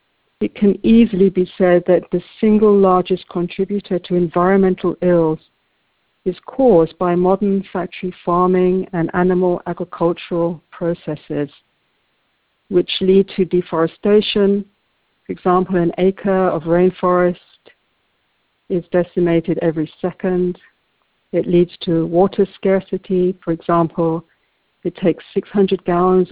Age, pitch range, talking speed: 60-79, 170-190 Hz, 110 wpm